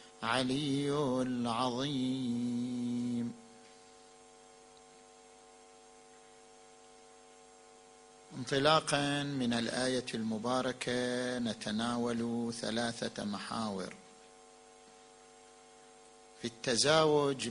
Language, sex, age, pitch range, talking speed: Arabic, male, 50-69, 130-150 Hz, 40 wpm